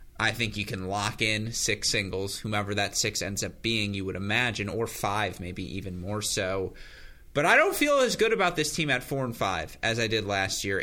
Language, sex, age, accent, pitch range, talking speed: English, male, 30-49, American, 100-120 Hz, 225 wpm